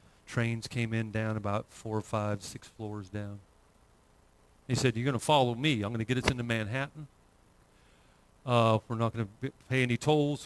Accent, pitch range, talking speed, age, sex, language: American, 110-145 Hz, 190 wpm, 40-59, male, English